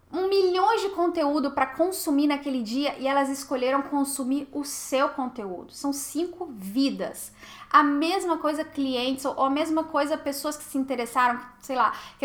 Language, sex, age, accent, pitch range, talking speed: Portuguese, female, 10-29, Brazilian, 255-315 Hz, 155 wpm